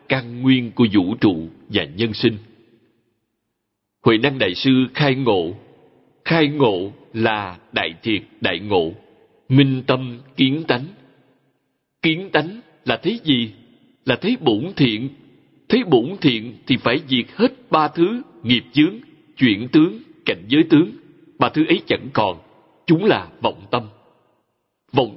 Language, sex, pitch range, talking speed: Vietnamese, male, 115-160 Hz, 145 wpm